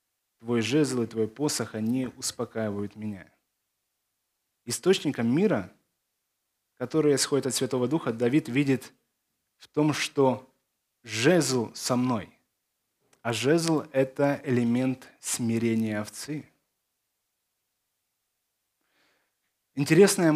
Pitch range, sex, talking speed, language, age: 115-150 Hz, male, 90 wpm, Ukrainian, 20-39